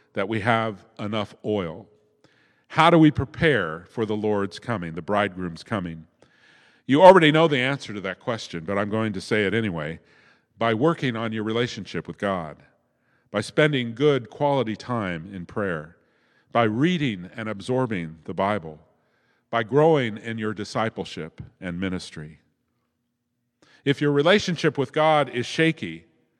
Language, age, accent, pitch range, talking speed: English, 50-69, American, 100-145 Hz, 150 wpm